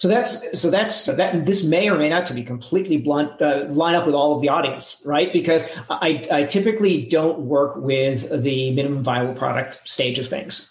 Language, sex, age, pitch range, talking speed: English, male, 40-59, 145-185 Hz, 205 wpm